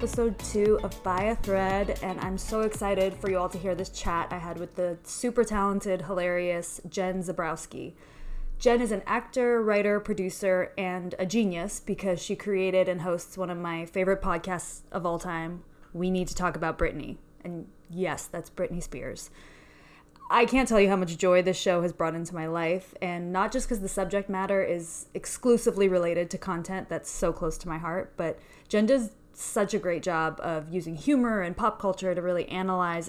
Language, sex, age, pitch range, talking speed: English, female, 20-39, 175-205 Hz, 195 wpm